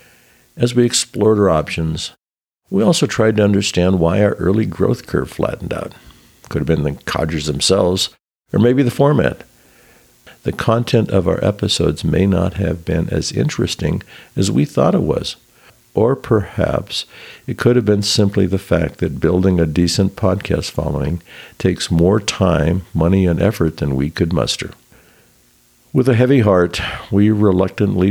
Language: English